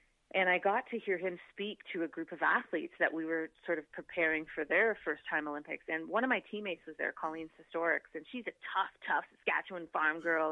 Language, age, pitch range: English, 30-49, 160-205 Hz